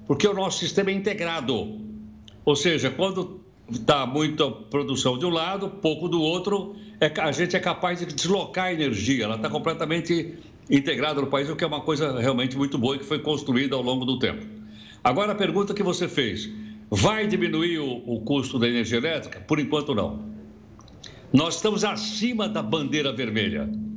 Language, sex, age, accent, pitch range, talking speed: Portuguese, male, 60-79, Brazilian, 115-175 Hz, 175 wpm